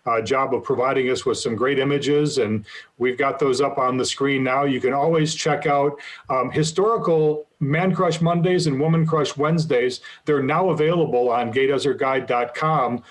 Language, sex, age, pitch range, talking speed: English, male, 40-59, 135-170 Hz, 170 wpm